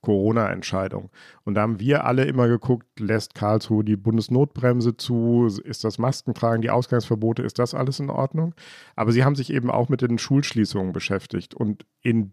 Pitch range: 110-130 Hz